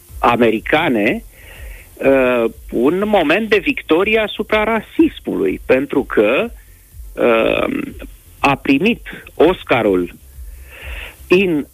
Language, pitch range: Romanian, 110-150 Hz